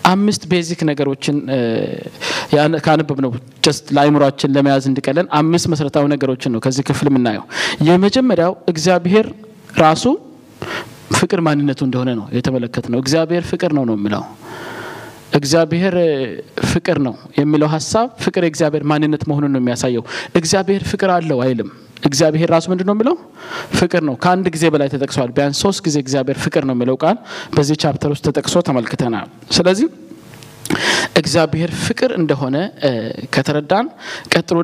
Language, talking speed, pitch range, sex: Amharic, 130 wpm, 140-175 Hz, male